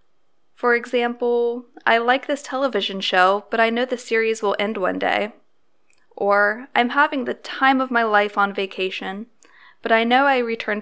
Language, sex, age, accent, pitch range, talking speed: English, female, 20-39, American, 215-265 Hz, 170 wpm